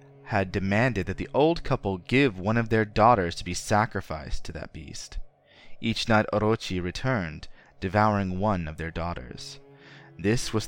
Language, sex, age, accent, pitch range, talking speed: English, male, 20-39, American, 95-130 Hz, 155 wpm